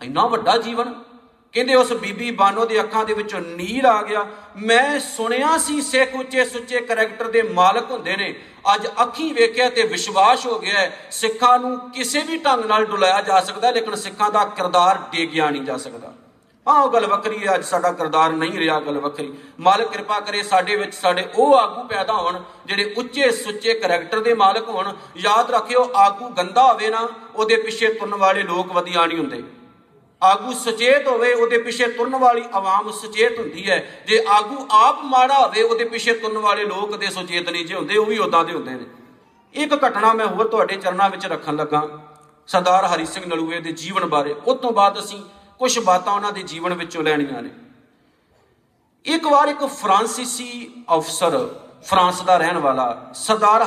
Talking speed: 180 wpm